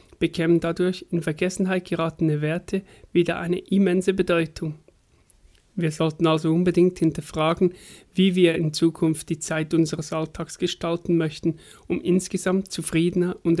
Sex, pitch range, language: male, 160-175 Hz, German